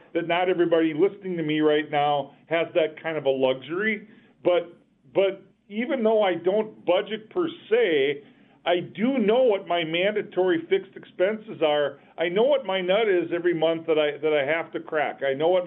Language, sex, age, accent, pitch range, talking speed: English, male, 50-69, American, 150-190 Hz, 190 wpm